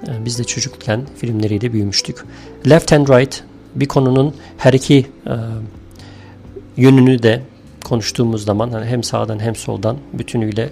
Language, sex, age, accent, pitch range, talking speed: Turkish, male, 40-59, native, 105-135 Hz, 130 wpm